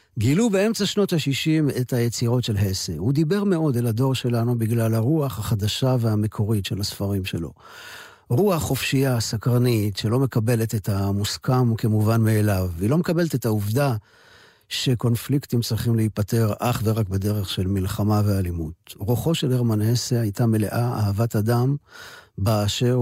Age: 50-69